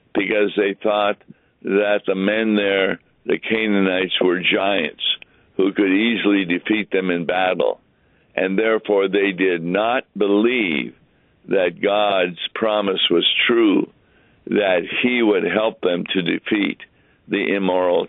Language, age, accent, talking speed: English, 60-79, American, 125 wpm